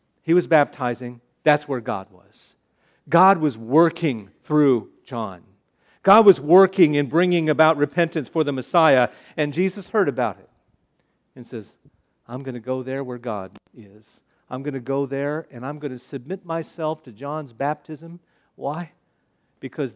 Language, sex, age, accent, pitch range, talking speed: English, male, 50-69, American, 125-185 Hz, 160 wpm